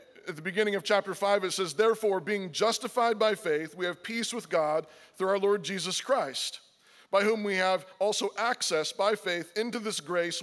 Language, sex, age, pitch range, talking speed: English, male, 40-59, 195-235 Hz, 195 wpm